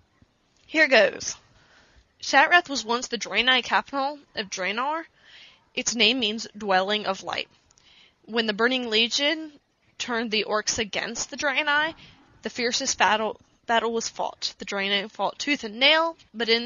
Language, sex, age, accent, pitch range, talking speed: English, female, 20-39, American, 210-245 Hz, 145 wpm